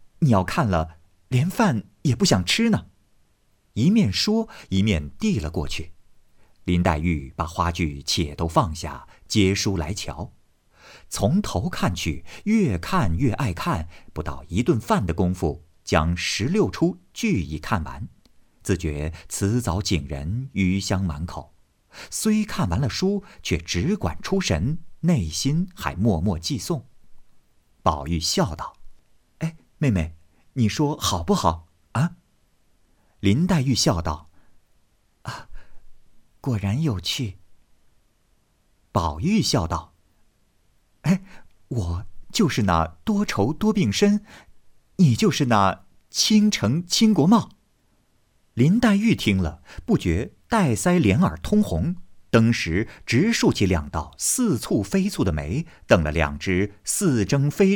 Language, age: Chinese, 50-69